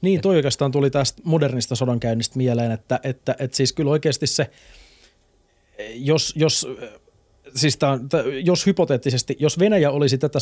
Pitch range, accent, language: 125-150 Hz, native, Finnish